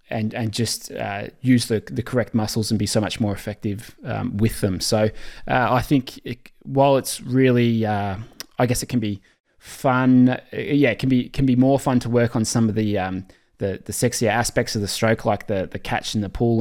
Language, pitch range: English, 110-125 Hz